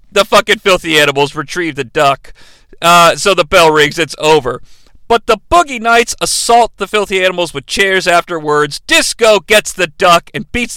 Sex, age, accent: male, 40-59, American